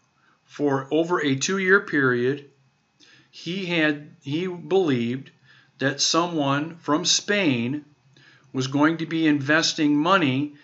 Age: 50-69